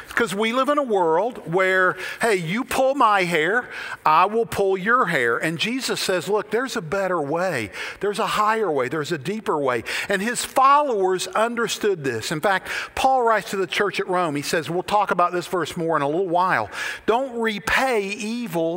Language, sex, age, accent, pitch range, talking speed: English, male, 50-69, American, 180-230 Hz, 200 wpm